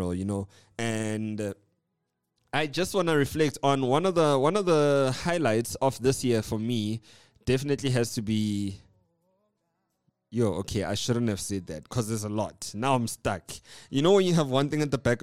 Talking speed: 195 wpm